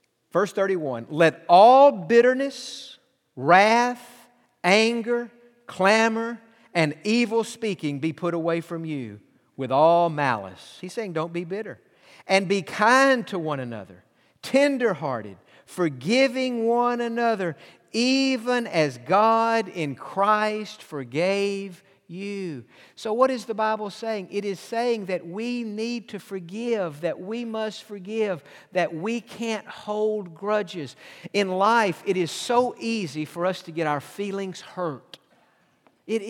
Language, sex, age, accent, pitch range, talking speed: English, male, 50-69, American, 170-230 Hz, 130 wpm